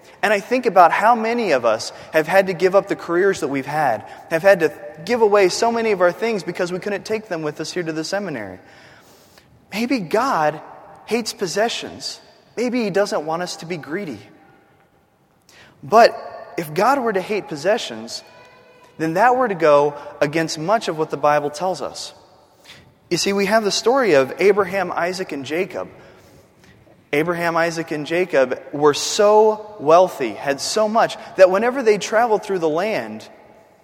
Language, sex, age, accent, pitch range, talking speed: English, male, 20-39, American, 160-215 Hz, 175 wpm